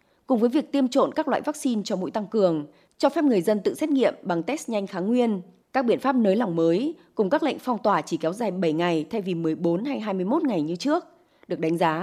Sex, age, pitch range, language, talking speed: female, 20-39, 170-275 Hz, Vietnamese, 255 wpm